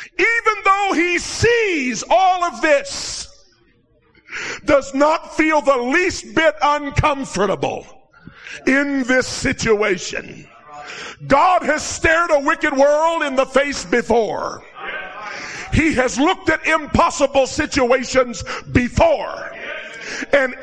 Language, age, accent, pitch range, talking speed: English, 50-69, American, 225-315 Hz, 100 wpm